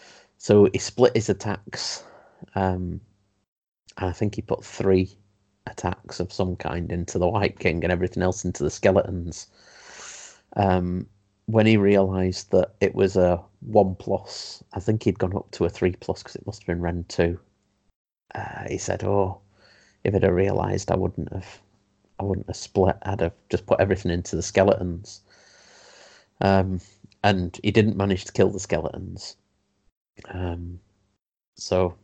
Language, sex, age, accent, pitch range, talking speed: English, male, 30-49, British, 90-100 Hz, 160 wpm